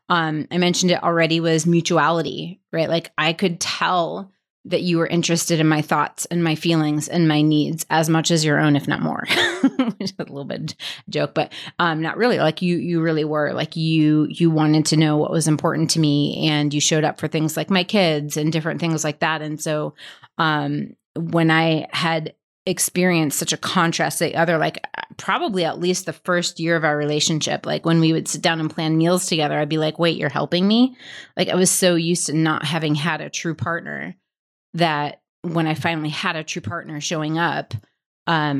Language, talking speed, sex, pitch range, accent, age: English, 210 wpm, female, 155-170 Hz, American, 30-49